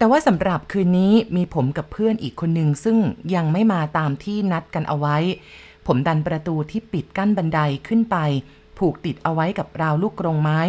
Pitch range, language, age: 150-195 Hz, Thai, 30-49